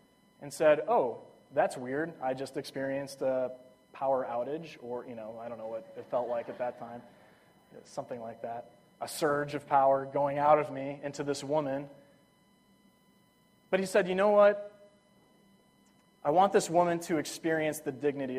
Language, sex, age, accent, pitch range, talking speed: English, male, 30-49, American, 135-200 Hz, 170 wpm